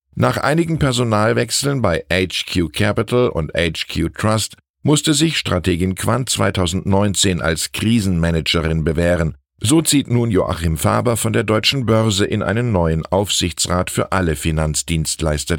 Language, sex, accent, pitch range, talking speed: German, male, German, 80-120 Hz, 125 wpm